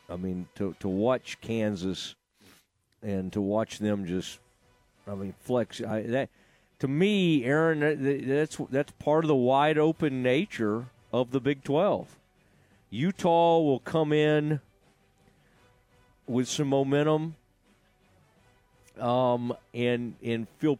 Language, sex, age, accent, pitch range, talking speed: English, male, 40-59, American, 110-145 Hz, 120 wpm